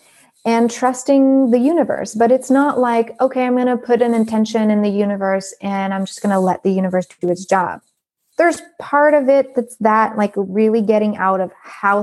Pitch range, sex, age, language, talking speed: 195-240 Hz, female, 20-39, English, 205 wpm